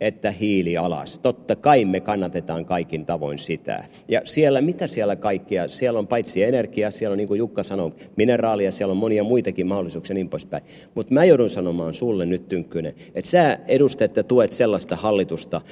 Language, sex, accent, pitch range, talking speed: Finnish, male, native, 95-130 Hz, 180 wpm